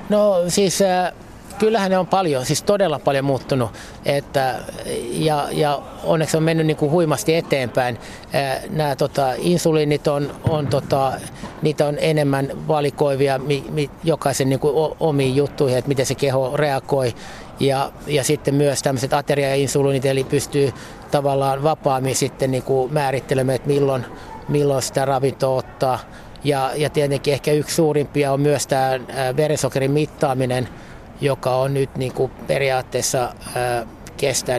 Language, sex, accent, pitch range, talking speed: Finnish, male, native, 130-150 Hz, 135 wpm